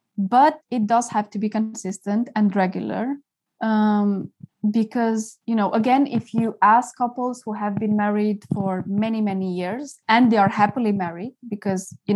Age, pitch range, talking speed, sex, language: 20-39, 195-235 Hz, 165 wpm, female, English